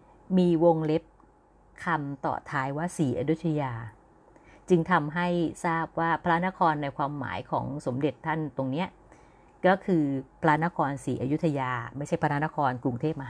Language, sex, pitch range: Thai, female, 145-190 Hz